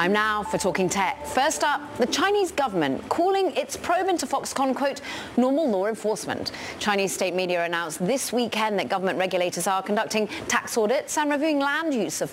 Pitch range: 195-285 Hz